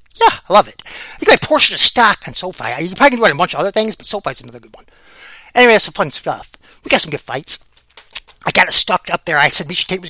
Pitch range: 155-215 Hz